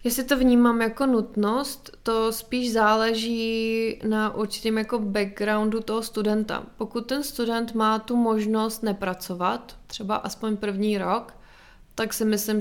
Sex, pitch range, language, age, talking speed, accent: female, 210-225 Hz, Czech, 20-39, 135 wpm, native